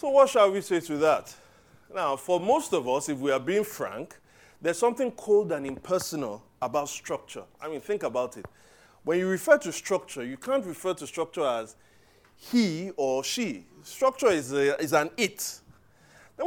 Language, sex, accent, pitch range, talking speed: English, male, Nigerian, 155-225 Hz, 180 wpm